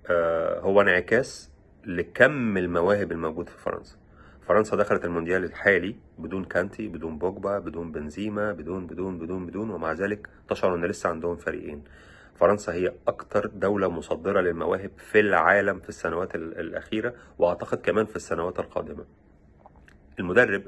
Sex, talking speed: male, 130 wpm